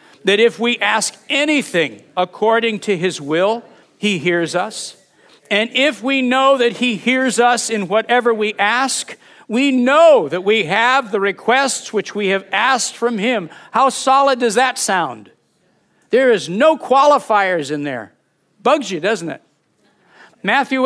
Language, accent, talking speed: English, American, 150 wpm